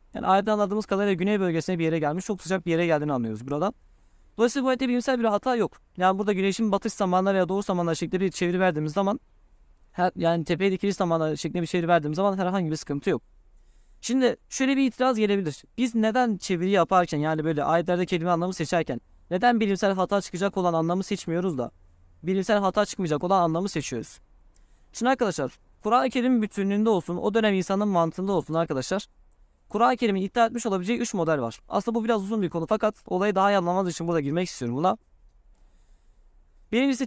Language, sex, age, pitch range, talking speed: Turkish, male, 20-39, 160-210 Hz, 190 wpm